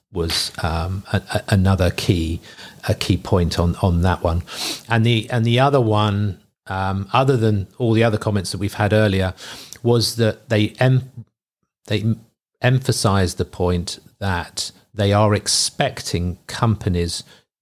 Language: English